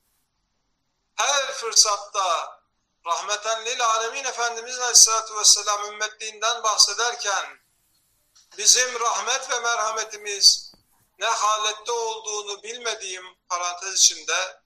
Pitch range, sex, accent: 200-250 Hz, male, native